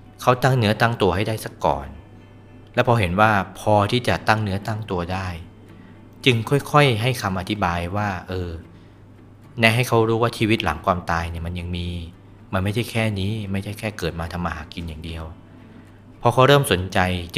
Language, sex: Thai, male